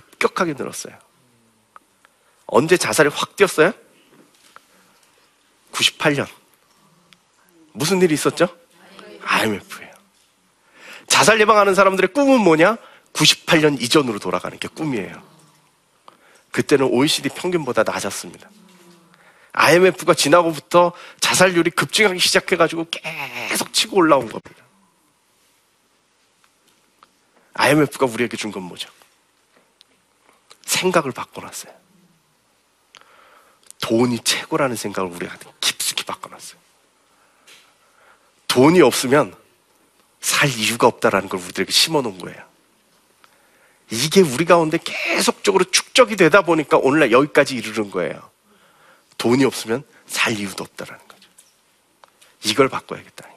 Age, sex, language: 40-59, male, Korean